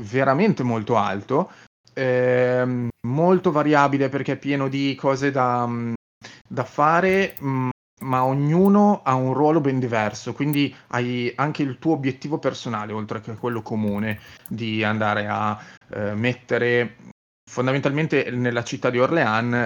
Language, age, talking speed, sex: Italian, 30-49, 130 wpm, male